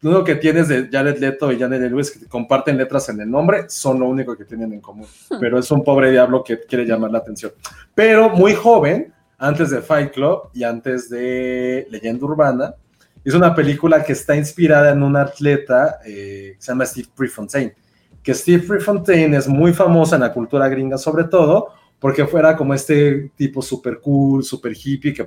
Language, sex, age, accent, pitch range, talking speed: Spanish, male, 30-49, Mexican, 125-165 Hz, 195 wpm